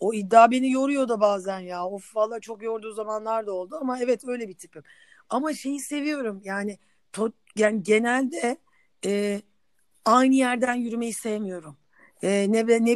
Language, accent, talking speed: Turkish, native, 155 wpm